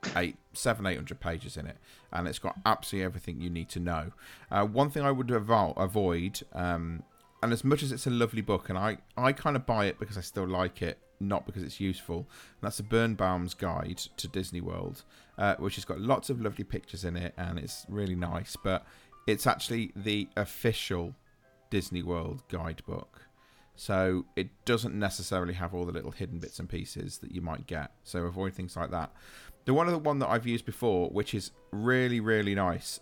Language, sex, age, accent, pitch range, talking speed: English, male, 40-59, British, 90-110 Hz, 200 wpm